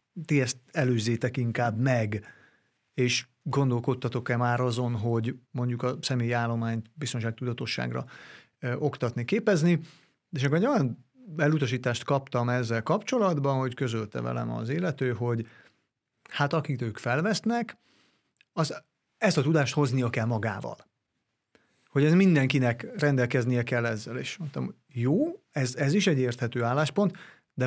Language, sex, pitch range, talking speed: Hungarian, male, 120-160 Hz, 130 wpm